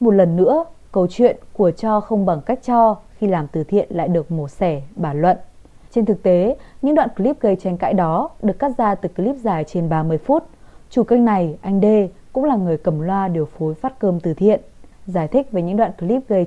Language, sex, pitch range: Vietnamese, female, 180-235 Hz